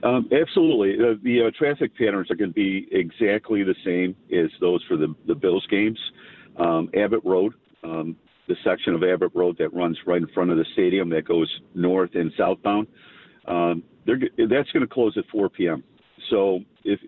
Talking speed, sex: 190 wpm, male